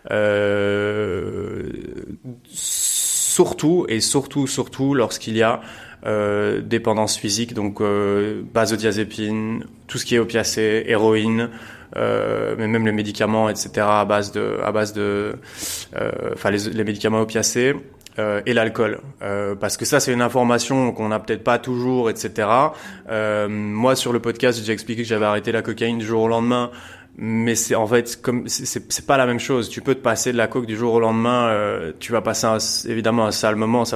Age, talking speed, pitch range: 20-39, 180 wpm, 105-120 Hz